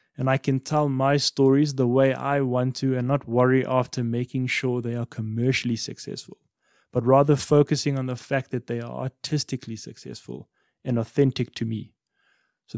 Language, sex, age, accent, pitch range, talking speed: English, male, 20-39, South African, 125-150 Hz, 175 wpm